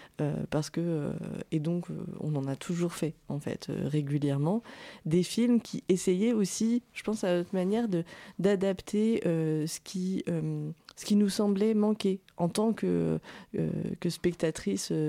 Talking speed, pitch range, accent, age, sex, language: 170 wpm, 155-185 Hz, French, 20-39, female, French